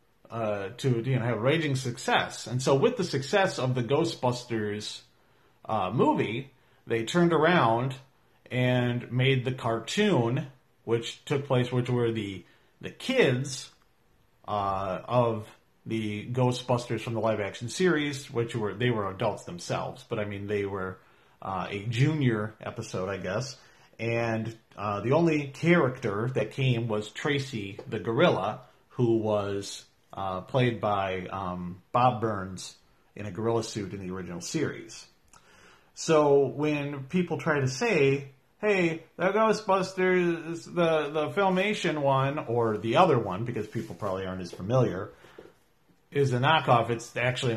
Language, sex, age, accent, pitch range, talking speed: English, male, 40-59, American, 105-140 Hz, 145 wpm